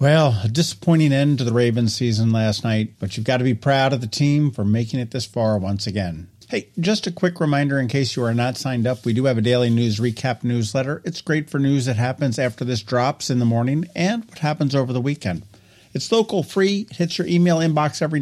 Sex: male